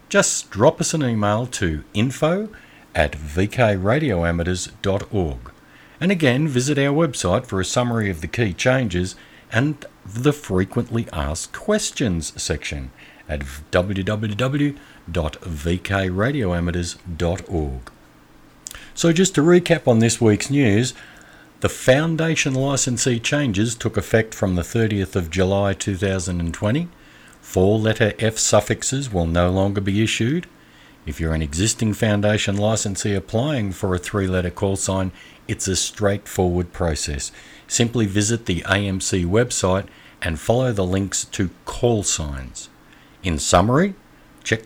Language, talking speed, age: English, 120 wpm, 50-69